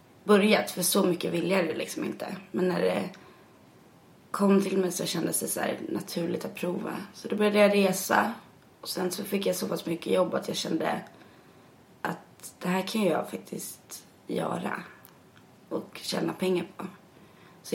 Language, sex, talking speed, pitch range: English, female, 175 wpm, 170-200 Hz